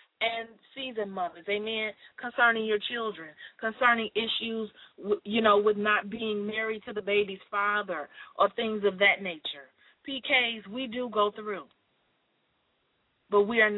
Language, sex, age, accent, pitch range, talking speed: English, female, 30-49, American, 205-265 Hz, 140 wpm